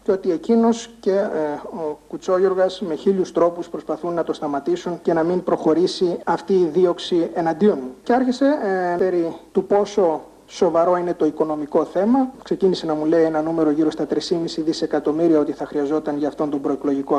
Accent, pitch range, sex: native, 165-205 Hz, male